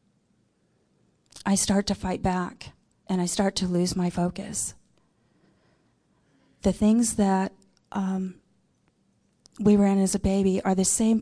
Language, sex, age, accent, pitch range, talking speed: English, female, 40-59, American, 175-200 Hz, 135 wpm